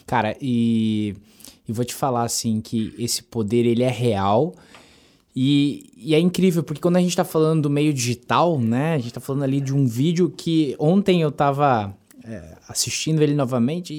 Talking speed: 185 wpm